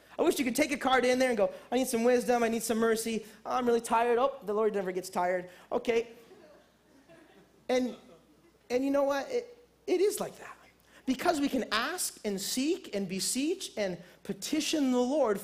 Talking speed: 200 wpm